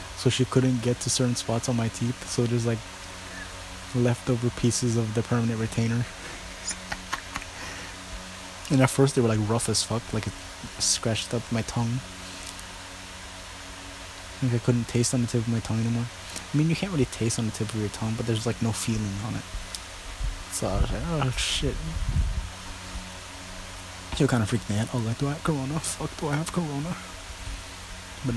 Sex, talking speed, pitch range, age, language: male, 190 wpm, 90-120 Hz, 20-39, English